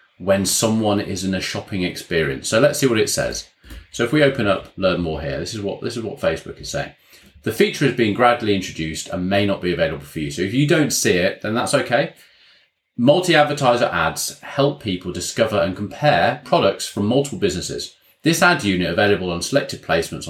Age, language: 30-49, English